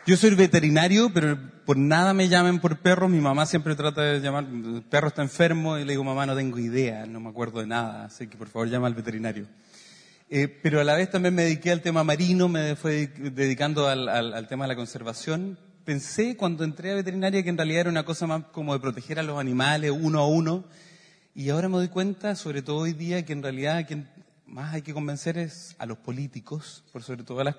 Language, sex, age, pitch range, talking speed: Spanish, male, 30-49, 130-175 Hz, 230 wpm